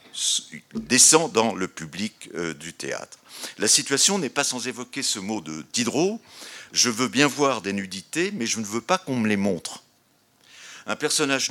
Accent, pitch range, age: French, 110-165 Hz, 50-69